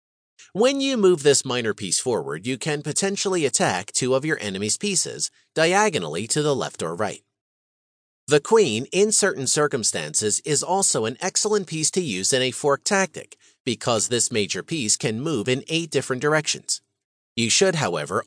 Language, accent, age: English, American, 40-59